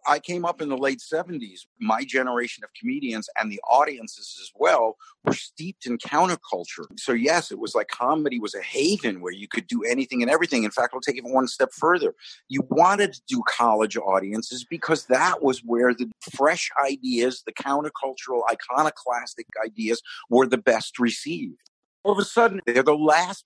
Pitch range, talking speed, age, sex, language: 110-180 Hz, 185 wpm, 50-69, male, English